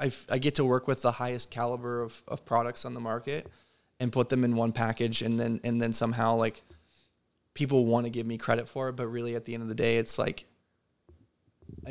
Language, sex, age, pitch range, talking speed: English, male, 20-39, 115-130 Hz, 225 wpm